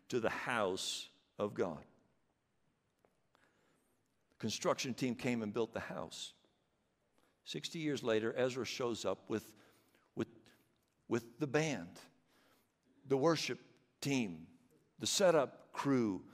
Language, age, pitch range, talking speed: English, 60-79, 130-165 Hz, 110 wpm